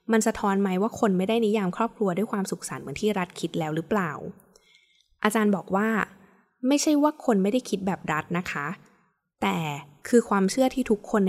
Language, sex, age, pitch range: Thai, female, 20-39, 175-220 Hz